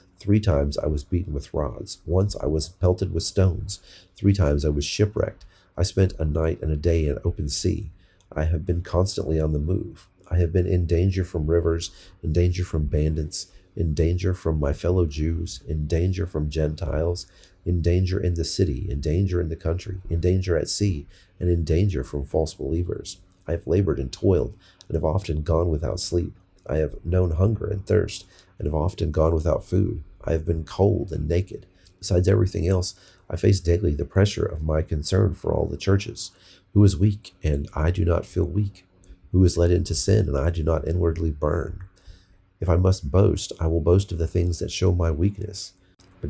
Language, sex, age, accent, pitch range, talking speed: English, male, 40-59, American, 80-95 Hz, 200 wpm